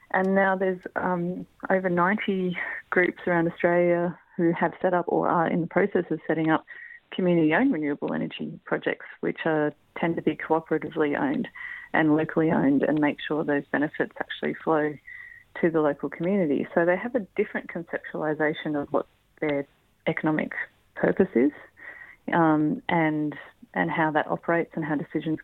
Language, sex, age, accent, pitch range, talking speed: English, female, 30-49, Australian, 155-185 Hz, 155 wpm